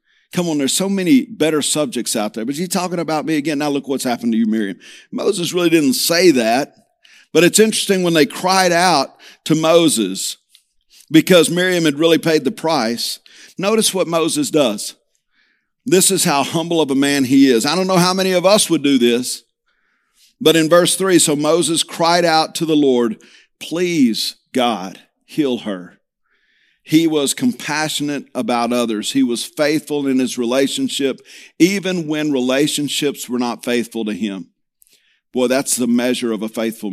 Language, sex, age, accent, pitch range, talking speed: English, male, 50-69, American, 130-170 Hz, 175 wpm